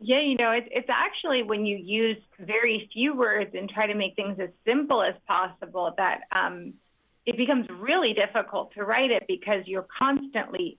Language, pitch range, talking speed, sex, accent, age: English, 195-245 Hz, 185 wpm, female, American, 30-49